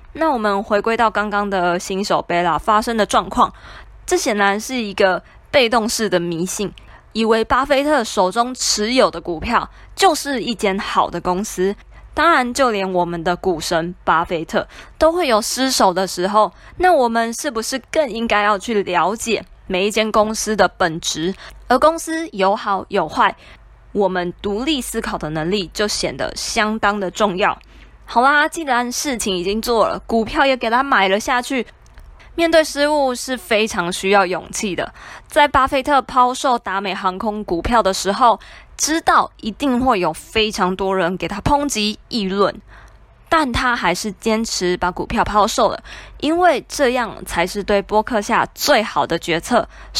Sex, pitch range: female, 190-250 Hz